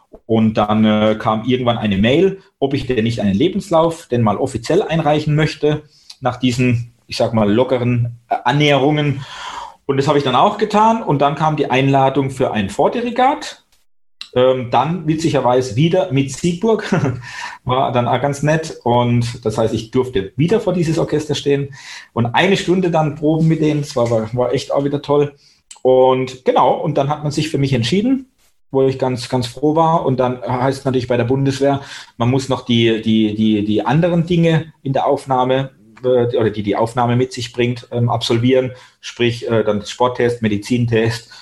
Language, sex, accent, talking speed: German, male, German, 180 wpm